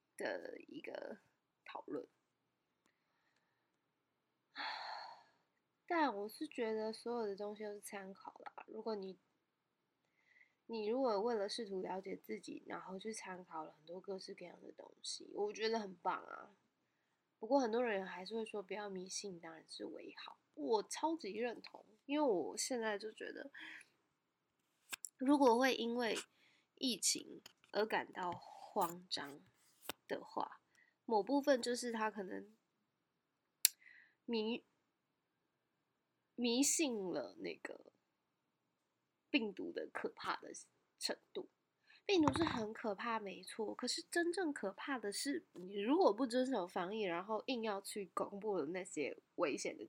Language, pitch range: Chinese, 200-290 Hz